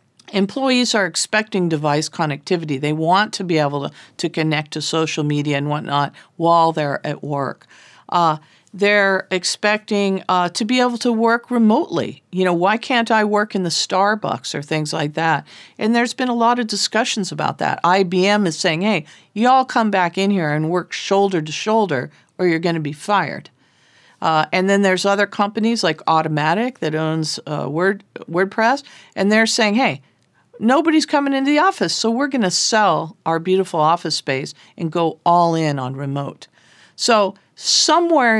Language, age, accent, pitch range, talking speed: English, 50-69, American, 160-210 Hz, 175 wpm